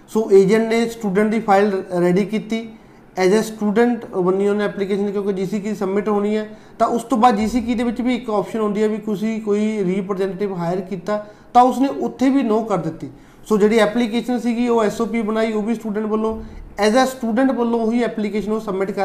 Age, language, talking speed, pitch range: 30-49, Punjabi, 205 wpm, 195-230 Hz